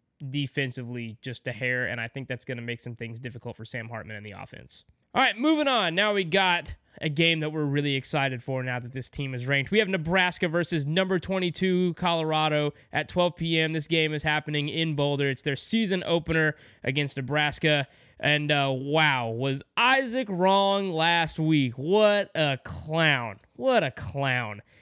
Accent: American